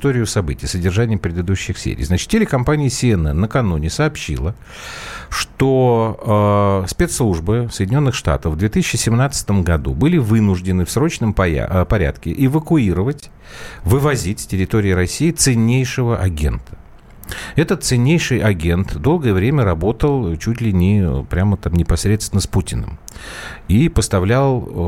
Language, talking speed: Russian, 110 wpm